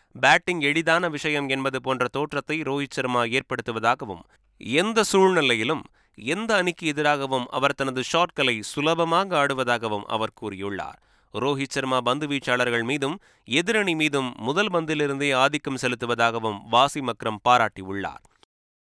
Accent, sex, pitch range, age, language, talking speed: native, male, 120-150 Hz, 30-49, Tamil, 105 wpm